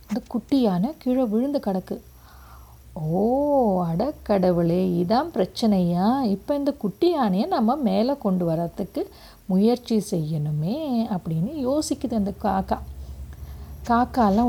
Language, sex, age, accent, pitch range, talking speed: Tamil, female, 50-69, native, 175-230 Hz, 100 wpm